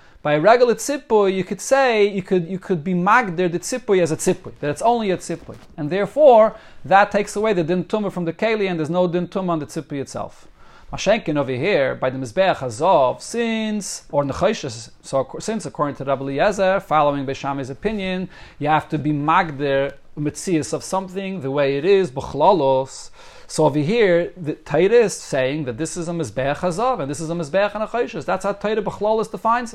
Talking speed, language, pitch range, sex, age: 195 wpm, English, 155-215 Hz, male, 40-59